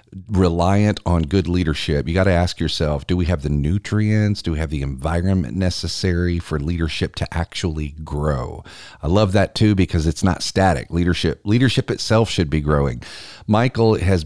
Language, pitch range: English, 85-105 Hz